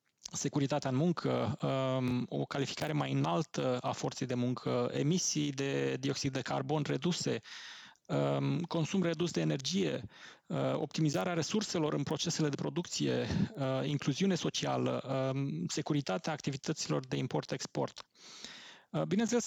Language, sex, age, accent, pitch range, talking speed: Romanian, male, 20-39, native, 135-165 Hz, 105 wpm